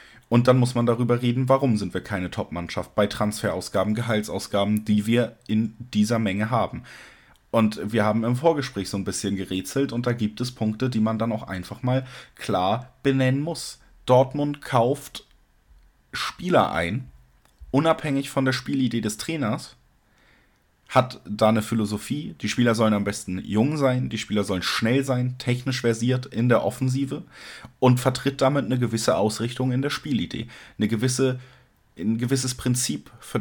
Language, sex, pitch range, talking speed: German, male, 105-130 Hz, 155 wpm